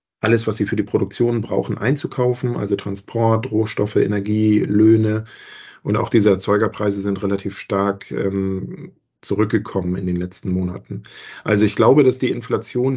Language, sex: German, male